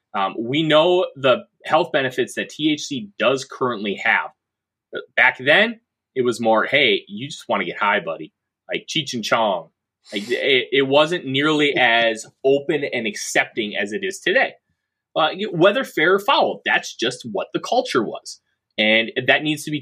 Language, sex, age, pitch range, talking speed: English, male, 30-49, 110-180 Hz, 170 wpm